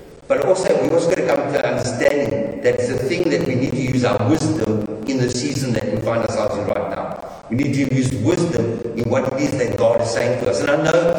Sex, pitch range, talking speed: female, 130-170 Hz, 255 wpm